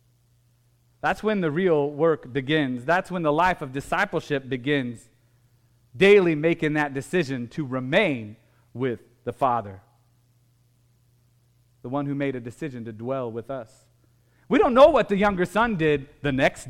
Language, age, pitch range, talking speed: English, 40-59, 120-200 Hz, 150 wpm